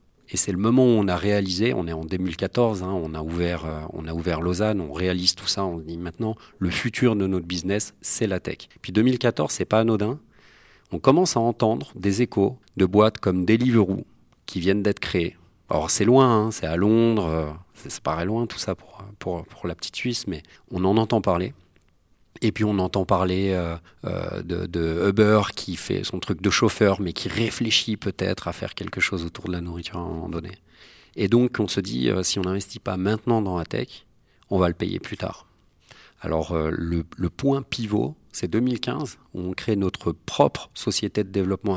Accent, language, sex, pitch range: French, French, male, 85-110 Hz